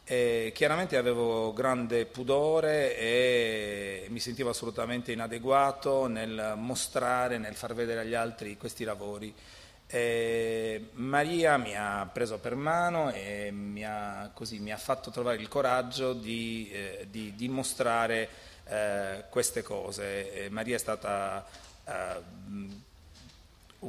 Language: Italian